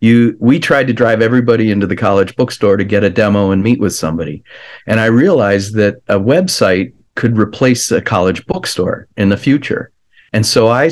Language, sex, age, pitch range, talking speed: English, male, 40-59, 100-120 Hz, 185 wpm